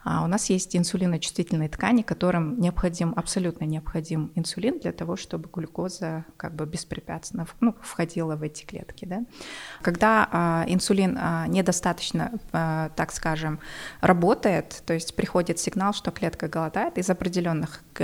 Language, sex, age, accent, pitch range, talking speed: Russian, female, 20-39, native, 165-205 Hz, 125 wpm